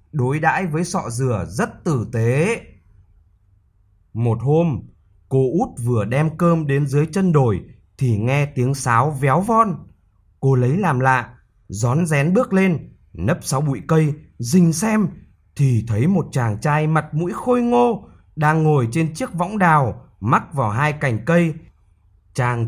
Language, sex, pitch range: Vietnamese, male, 115-160 Hz